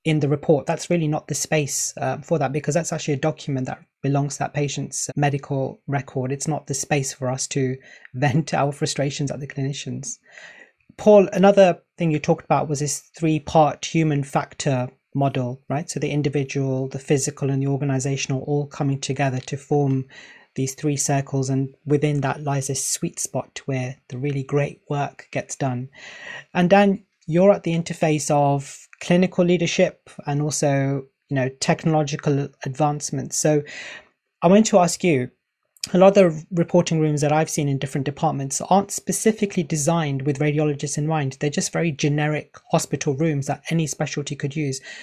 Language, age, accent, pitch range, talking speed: English, 30-49, British, 140-165 Hz, 175 wpm